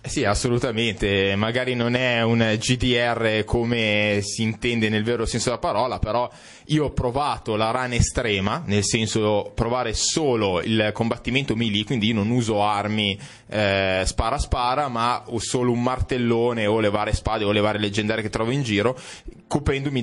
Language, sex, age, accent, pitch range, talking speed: Italian, male, 20-39, native, 100-120 Hz, 165 wpm